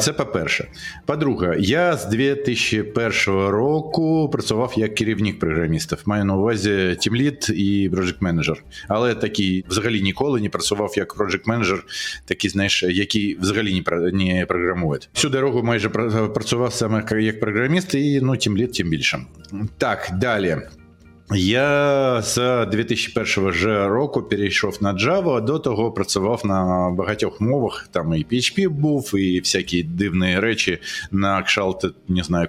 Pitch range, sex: 95-120 Hz, male